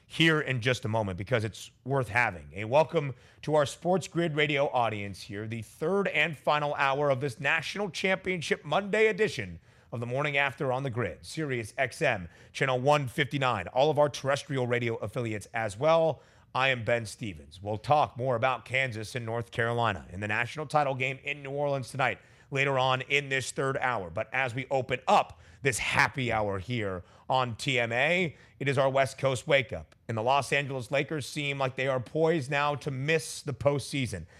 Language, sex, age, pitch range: English, male, 30-49, 115-145 Hz